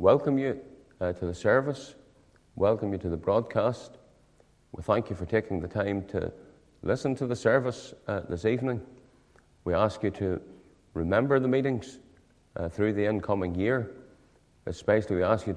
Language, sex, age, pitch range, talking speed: English, male, 40-59, 95-130 Hz, 160 wpm